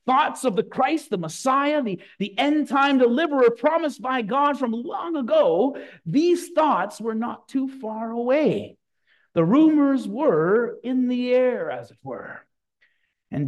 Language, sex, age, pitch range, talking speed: English, male, 50-69, 190-280 Hz, 145 wpm